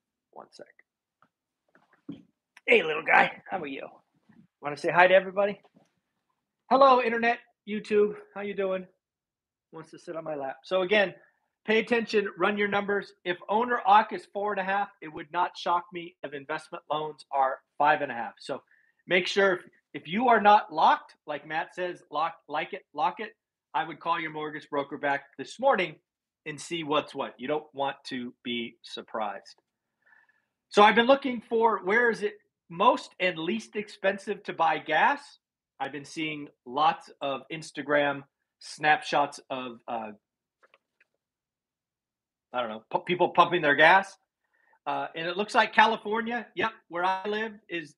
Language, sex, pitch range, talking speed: English, male, 150-200 Hz, 165 wpm